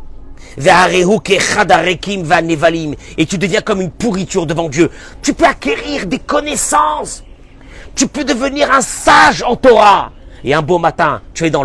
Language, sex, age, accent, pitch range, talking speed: French, male, 40-59, French, 130-180 Hz, 140 wpm